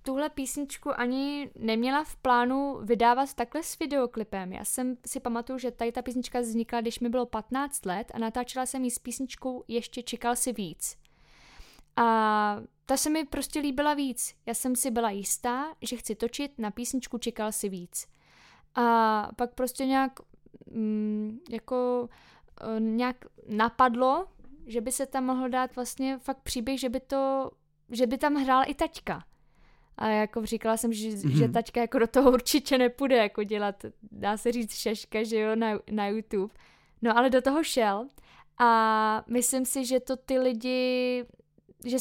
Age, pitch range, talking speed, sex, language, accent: 10-29, 225-260 Hz, 165 wpm, female, Czech, native